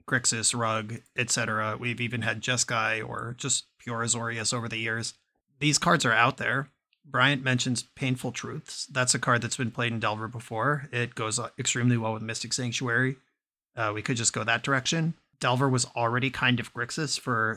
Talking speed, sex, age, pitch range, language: 180 wpm, male, 30-49, 115-135 Hz, English